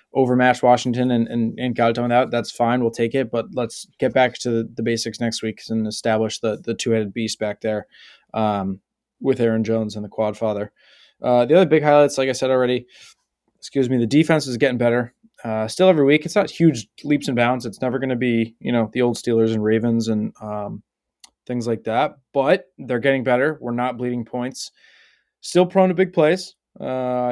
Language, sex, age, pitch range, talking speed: English, male, 20-39, 120-135 Hz, 210 wpm